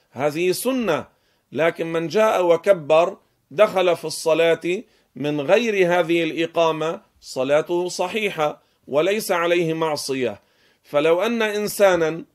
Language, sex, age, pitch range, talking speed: Arabic, male, 40-59, 155-185 Hz, 100 wpm